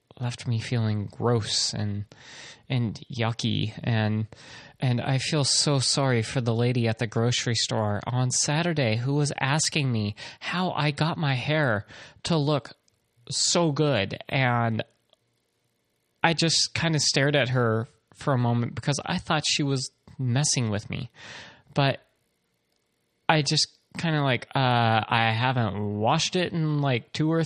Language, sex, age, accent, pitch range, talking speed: English, male, 30-49, American, 115-155 Hz, 150 wpm